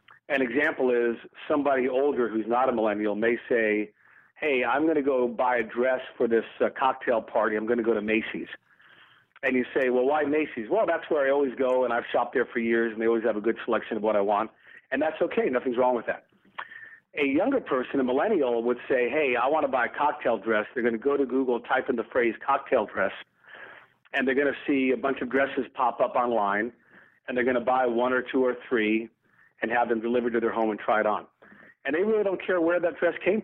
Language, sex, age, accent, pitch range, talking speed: English, male, 40-59, American, 120-140 Hz, 240 wpm